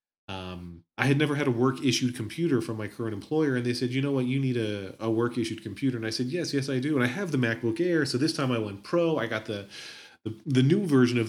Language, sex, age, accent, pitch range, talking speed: English, male, 30-49, American, 105-135 Hz, 270 wpm